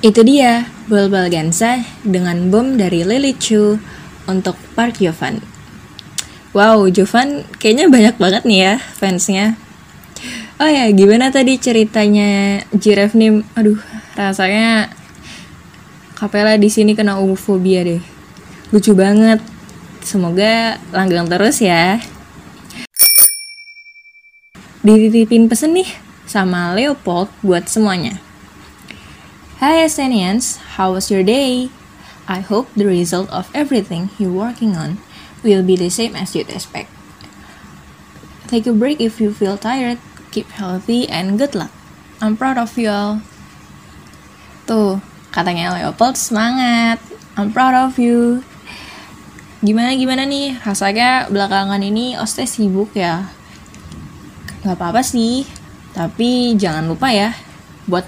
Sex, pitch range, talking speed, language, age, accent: female, 195-235 Hz, 115 wpm, Indonesian, 20-39, native